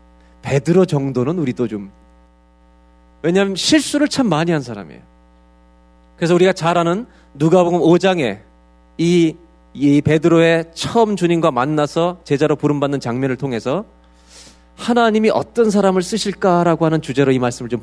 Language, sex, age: Korean, male, 40-59